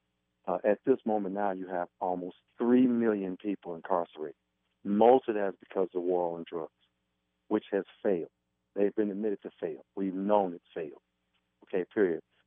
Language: English